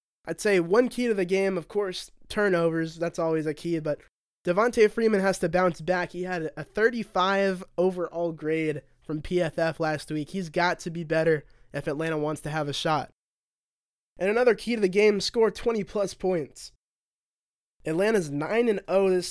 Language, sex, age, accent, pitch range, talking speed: English, male, 20-39, American, 160-195 Hz, 170 wpm